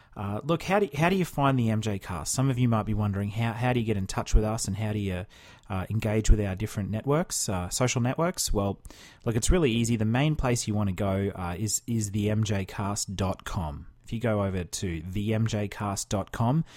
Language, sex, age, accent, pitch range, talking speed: English, male, 30-49, Australian, 100-125 Hz, 220 wpm